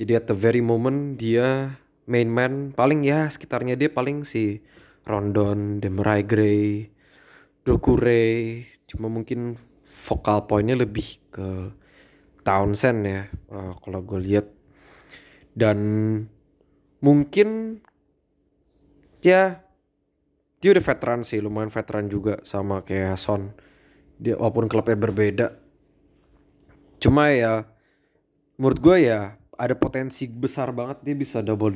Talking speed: 110 wpm